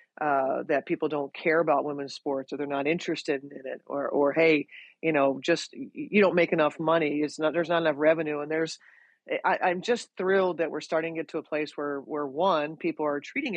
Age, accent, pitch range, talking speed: 40-59, American, 155-190 Hz, 225 wpm